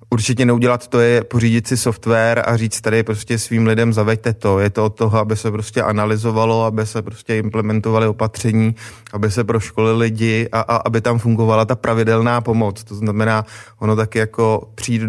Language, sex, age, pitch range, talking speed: Czech, male, 20-39, 110-115 Hz, 185 wpm